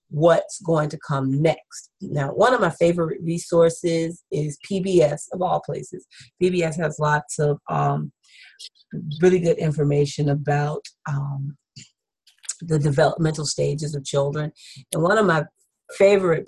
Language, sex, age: English, female, 30-49